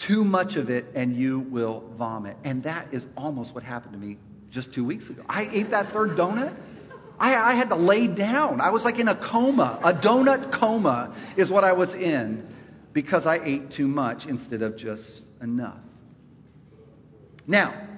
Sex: male